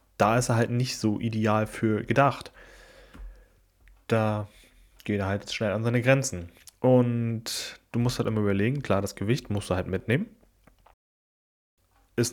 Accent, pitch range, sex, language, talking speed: German, 100-120 Hz, male, German, 150 wpm